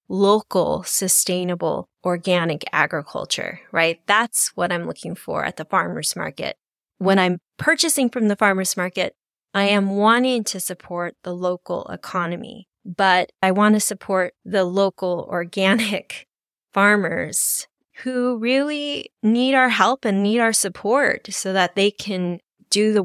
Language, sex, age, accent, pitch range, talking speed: English, female, 20-39, American, 180-210 Hz, 140 wpm